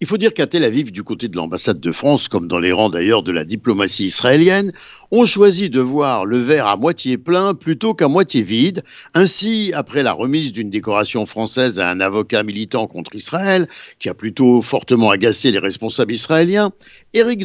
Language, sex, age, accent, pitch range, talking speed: Italian, male, 60-79, French, 125-175 Hz, 195 wpm